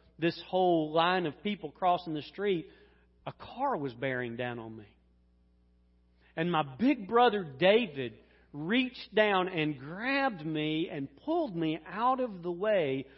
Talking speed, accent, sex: 145 wpm, American, male